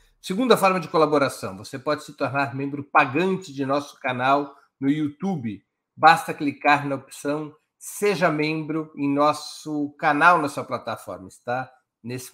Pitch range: 130-165 Hz